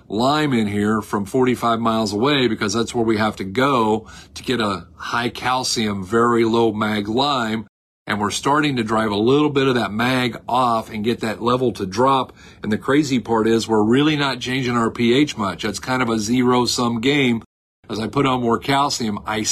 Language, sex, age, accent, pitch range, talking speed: English, male, 40-59, American, 110-125 Hz, 205 wpm